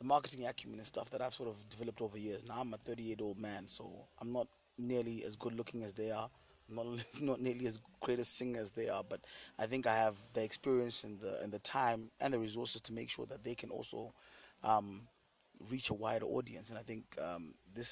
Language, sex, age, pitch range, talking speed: English, male, 20-39, 110-125 Hz, 240 wpm